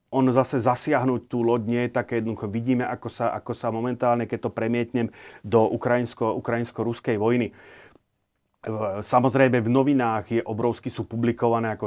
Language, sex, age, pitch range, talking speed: Slovak, male, 30-49, 110-125 Hz, 140 wpm